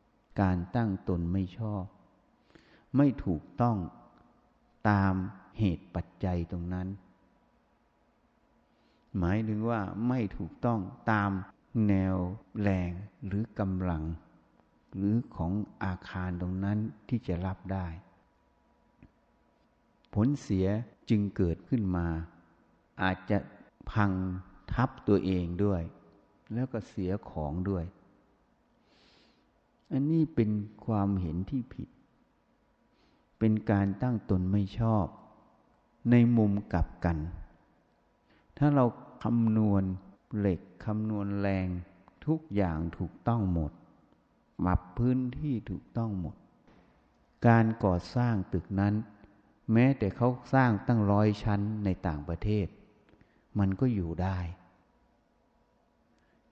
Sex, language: male, Thai